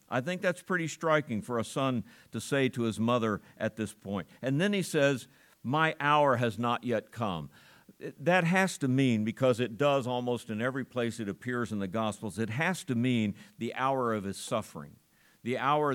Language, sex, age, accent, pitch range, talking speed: English, male, 50-69, American, 105-135 Hz, 200 wpm